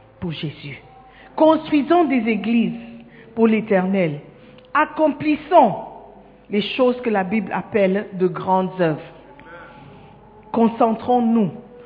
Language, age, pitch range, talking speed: French, 50-69, 175-270 Hz, 85 wpm